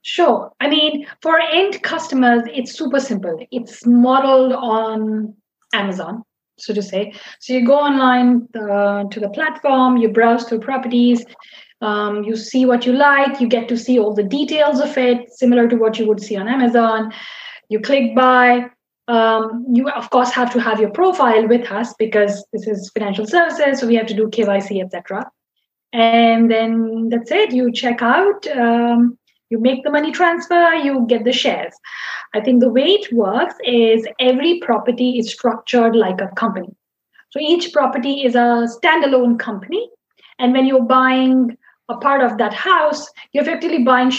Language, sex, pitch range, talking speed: English, female, 225-270 Hz, 170 wpm